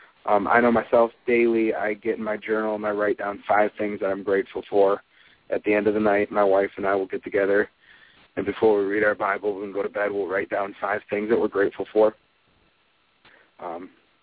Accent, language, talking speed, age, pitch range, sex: American, English, 225 wpm, 30-49, 105-120 Hz, male